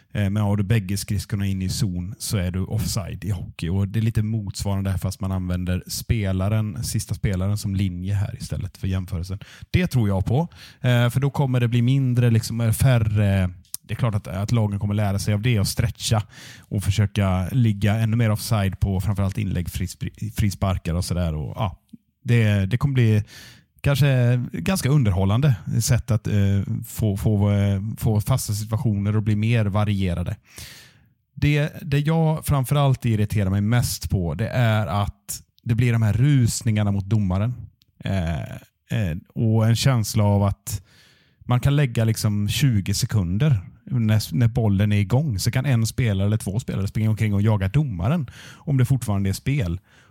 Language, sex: Swedish, male